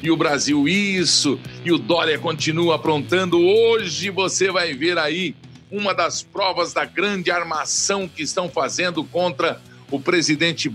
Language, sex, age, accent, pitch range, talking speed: Portuguese, male, 60-79, Brazilian, 155-195 Hz, 145 wpm